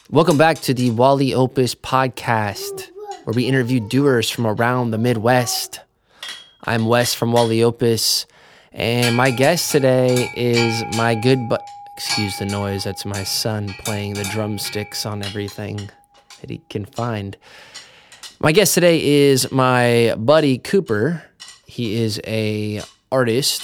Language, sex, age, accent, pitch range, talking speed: English, male, 20-39, American, 105-130 Hz, 135 wpm